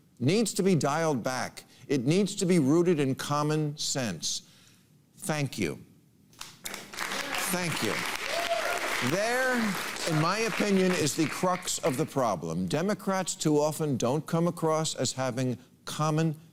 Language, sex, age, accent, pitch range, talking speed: English, male, 50-69, American, 130-180 Hz, 130 wpm